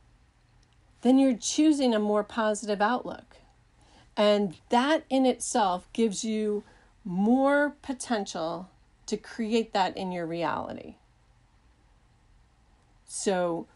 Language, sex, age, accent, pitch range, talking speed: English, female, 40-59, American, 190-245 Hz, 95 wpm